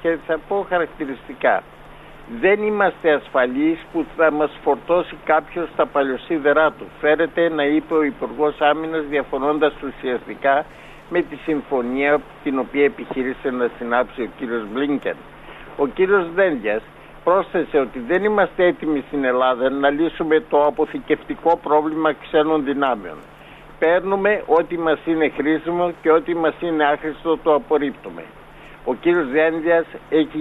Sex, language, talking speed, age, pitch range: male, Greek, 130 wpm, 60-79, 140-165 Hz